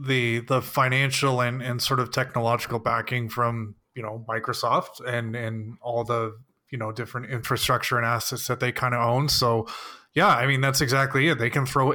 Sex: male